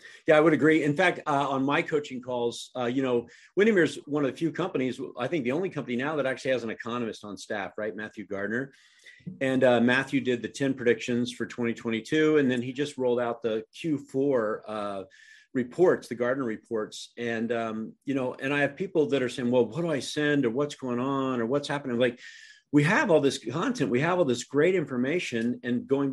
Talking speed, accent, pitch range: 220 wpm, American, 120-155 Hz